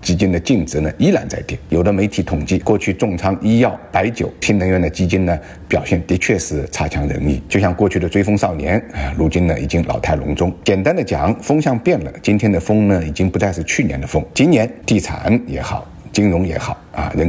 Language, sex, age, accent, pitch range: Chinese, male, 50-69, native, 80-105 Hz